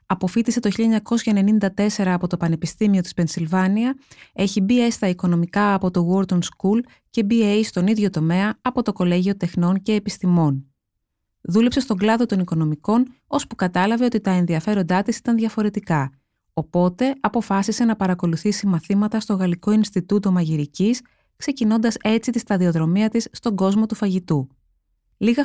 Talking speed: 140 wpm